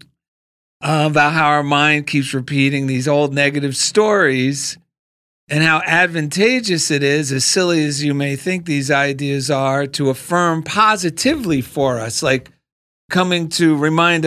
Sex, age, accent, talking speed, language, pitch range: male, 50-69, American, 145 wpm, English, 140-175 Hz